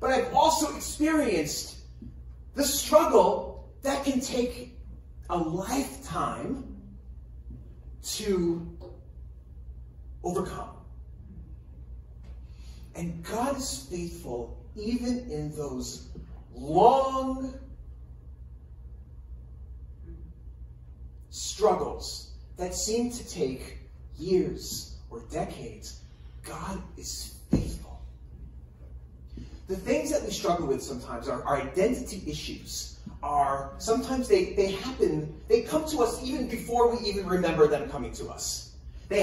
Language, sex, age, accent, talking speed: English, male, 40-59, American, 95 wpm